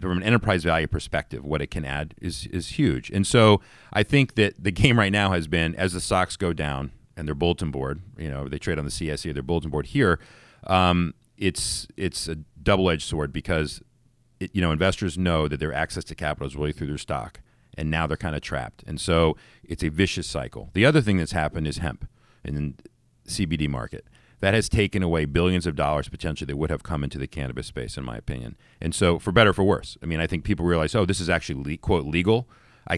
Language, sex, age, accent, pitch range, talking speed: English, male, 40-59, American, 80-95 Hz, 235 wpm